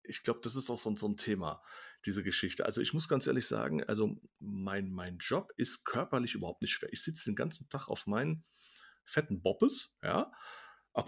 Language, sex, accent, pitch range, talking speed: German, male, German, 105-150 Hz, 195 wpm